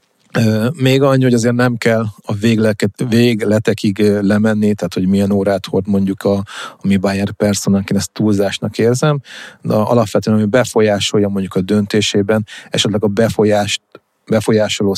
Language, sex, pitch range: Hungarian, male, 100-115 Hz